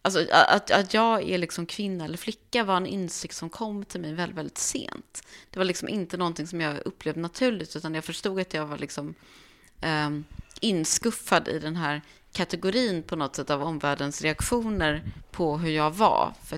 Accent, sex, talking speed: Swedish, female, 185 wpm